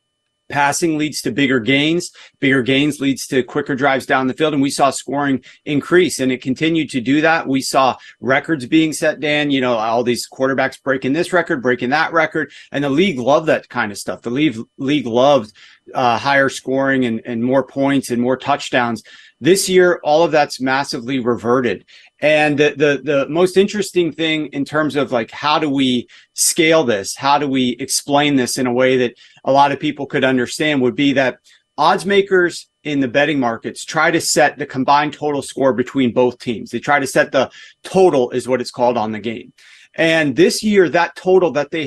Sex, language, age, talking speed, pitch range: male, English, 40-59, 200 wpm, 130-165 Hz